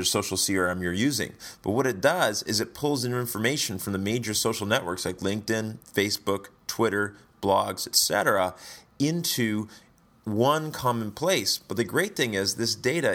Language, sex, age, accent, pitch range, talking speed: English, male, 30-49, American, 95-120 Hz, 160 wpm